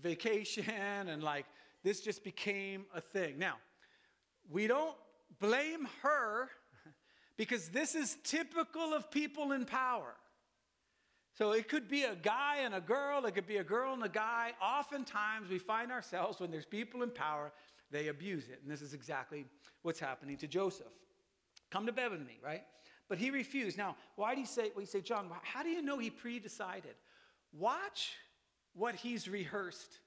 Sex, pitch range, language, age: male, 180-270 Hz, English, 40-59